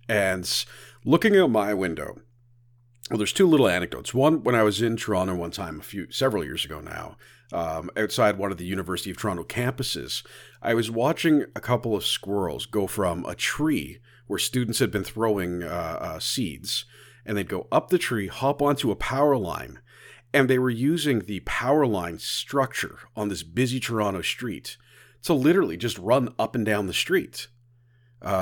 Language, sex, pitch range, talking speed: English, male, 100-130 Hz, 180 wpm